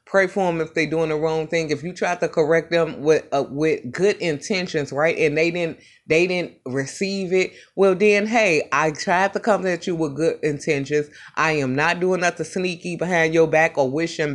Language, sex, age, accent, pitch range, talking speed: English, female, 30-49, American, 145-180 Hz, 215 wpm